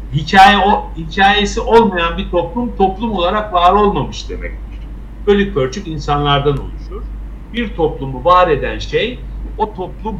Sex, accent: male, native